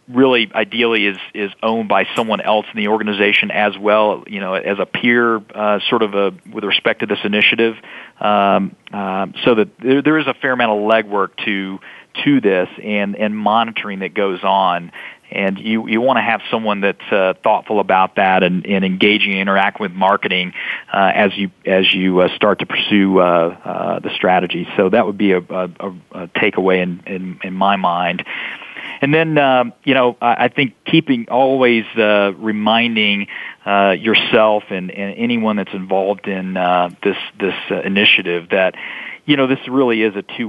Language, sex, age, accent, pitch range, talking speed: English, male, 40-59, American, 95-115 Hz, 185 wpm